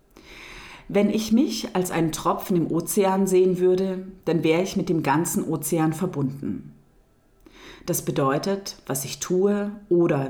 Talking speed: 140 wpm